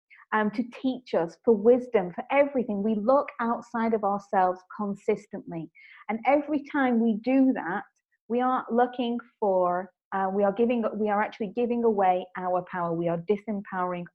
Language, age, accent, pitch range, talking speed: English, 30-49, British, 190-240 Hz, 160 wpm